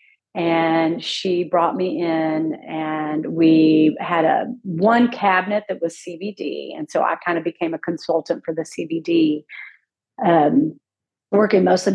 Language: English